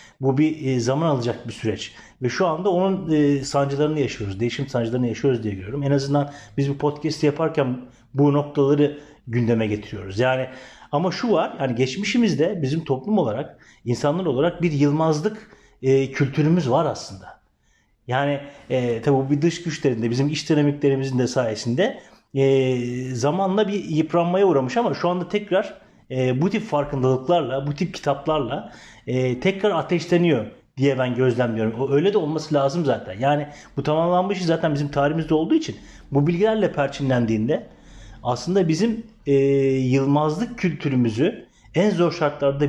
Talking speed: 145 wpm